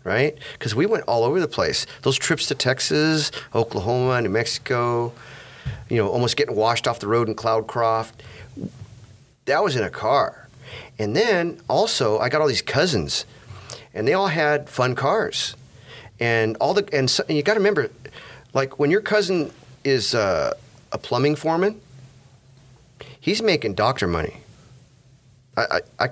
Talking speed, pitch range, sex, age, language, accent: 150 wpm, 115-140 Hz, male, 40-59, English, American